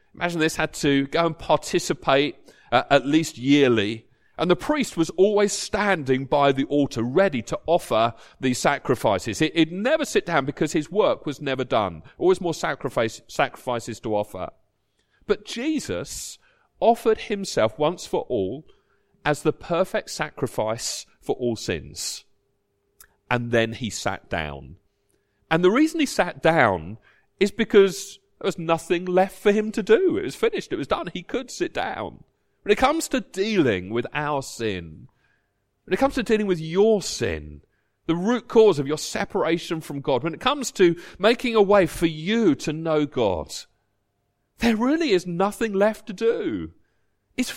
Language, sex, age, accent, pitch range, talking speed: English, male, 40-59, British, 140-215 Hz, 165 wpm